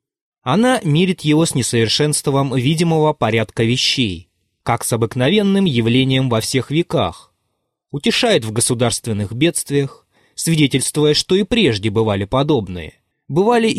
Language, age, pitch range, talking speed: Russian, 20-39, 115-155 Hz, 115 wpm